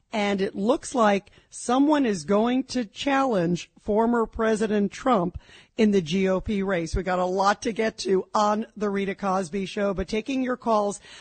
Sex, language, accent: female, English, American